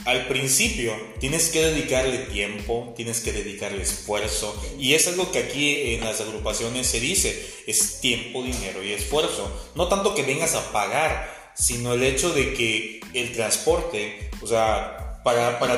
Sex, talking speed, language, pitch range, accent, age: male, 160 wpm, Spanish, 120-160 Hz, Mexican, 30-49